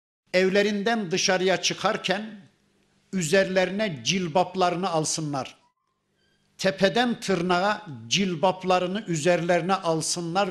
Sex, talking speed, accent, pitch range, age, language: male, 65 wpm, native, 170-195 Hz, 50-69, Turkish